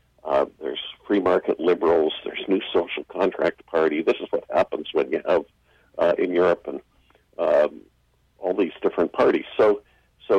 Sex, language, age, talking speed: male, English, 50-69, 160 wpm